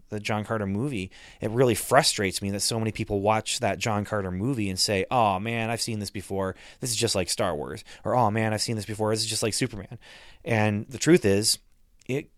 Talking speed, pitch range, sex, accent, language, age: 235 wpm, 95-115 Hz, male, American, English, 30-49